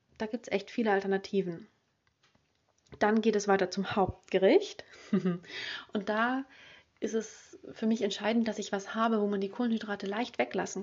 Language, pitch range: German, 195-220 Hz